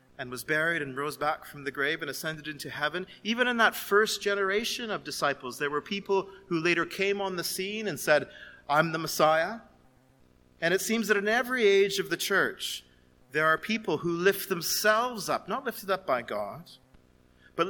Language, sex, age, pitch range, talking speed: English, male, 40-59, 150-205 Hz, 195 wpm